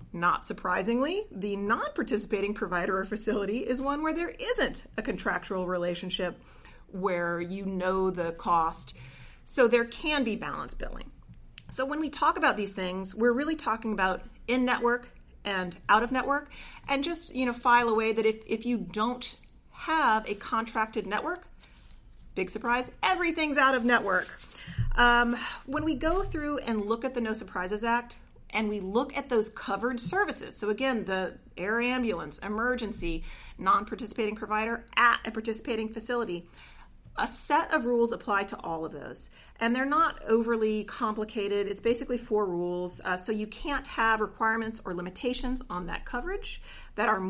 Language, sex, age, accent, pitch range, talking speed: English, female, 30-49, American, 200-255 Hz, 155 wpm